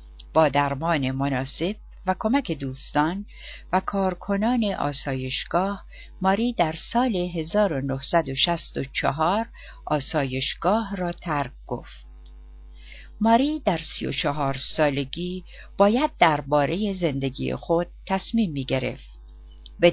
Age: 50-69